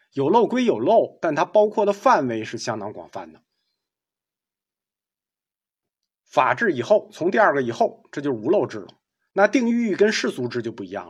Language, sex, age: Chinese, male, 50-69